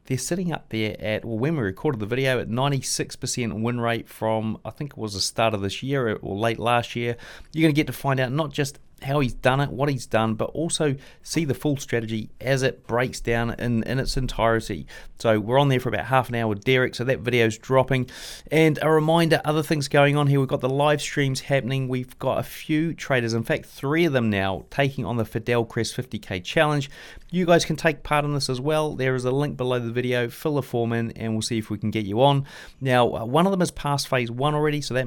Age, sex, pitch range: 30-49, male, 115-145 Hz